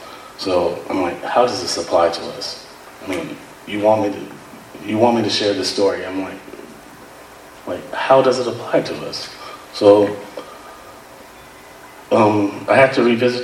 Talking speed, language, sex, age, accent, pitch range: 165 wpm, English, male, 30-49, American, 95-105 Hz